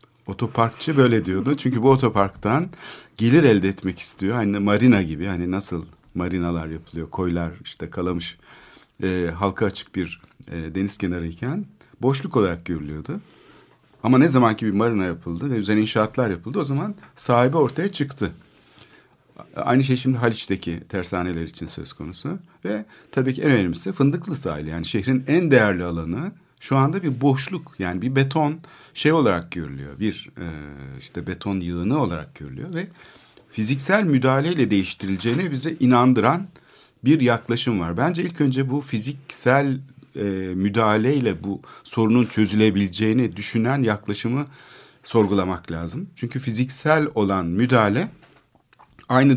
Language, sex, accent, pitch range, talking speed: Turkish, male, native, 95-135 Hz, 130 wpm